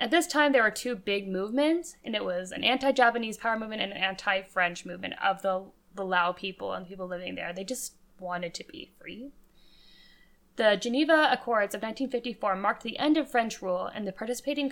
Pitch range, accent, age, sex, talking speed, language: 180-235 Hz, American, 10-29, female, 200 wpm, English